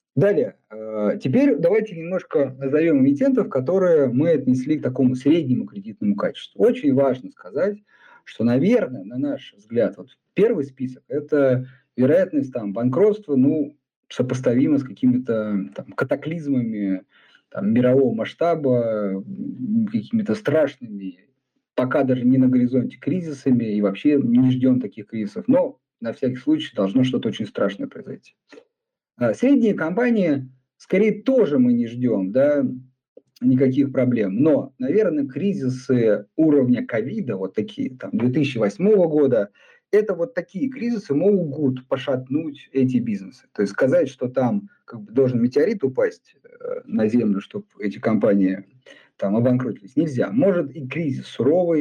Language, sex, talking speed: Russian, male, 125 wpm